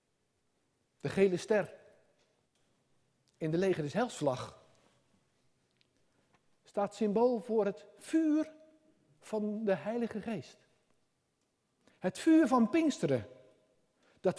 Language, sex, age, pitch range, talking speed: Dutch, male, 60-79, 140-210 Hz, 90 wpm